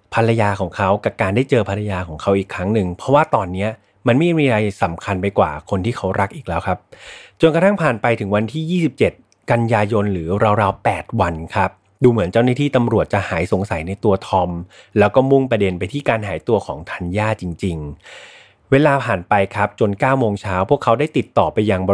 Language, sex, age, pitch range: Thai, male, 30-49, 95-125 Hz